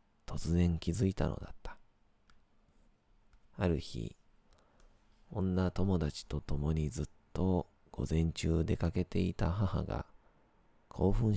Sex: male